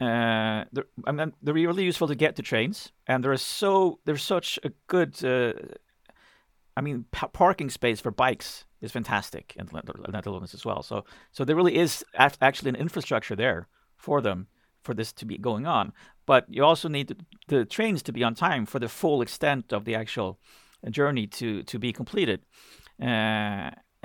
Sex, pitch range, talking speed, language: male, 110-145 Hz, 190 wpm, English